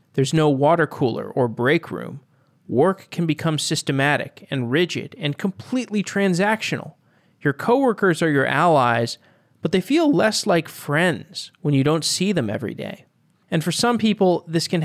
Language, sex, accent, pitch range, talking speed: English, male, American, 130-165 Hz, 160 wpm